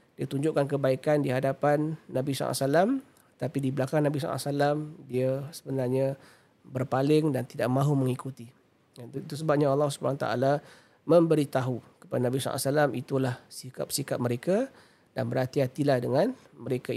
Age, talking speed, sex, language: 40-59, 145 wpm, male, Malay